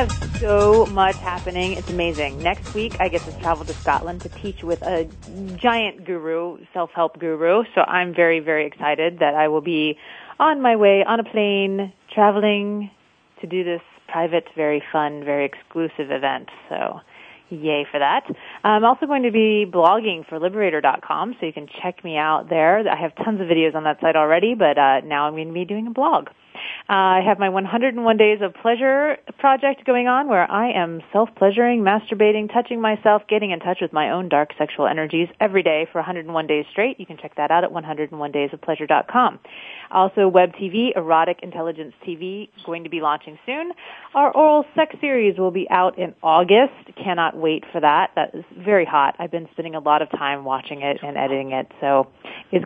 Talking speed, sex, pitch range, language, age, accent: 190 wpm, female, 160-210 Hz, English, 30-49, American